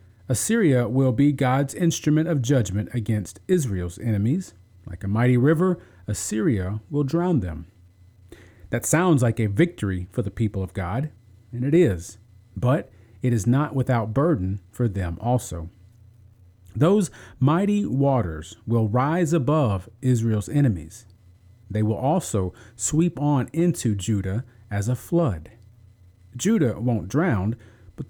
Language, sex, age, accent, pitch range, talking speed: English, male, 40-59, American, 100-135 Hz, 130 wpm